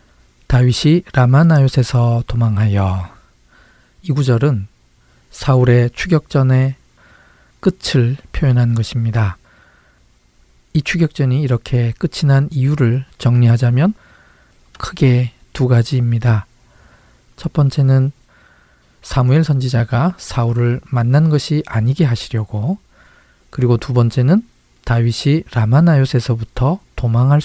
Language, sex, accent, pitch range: Korean, male, native, 115-140 Hz